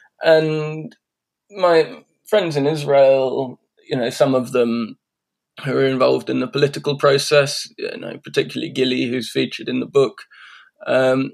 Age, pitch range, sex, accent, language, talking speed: 20-39, 120-160 Hz, male, British, English, 145 wpm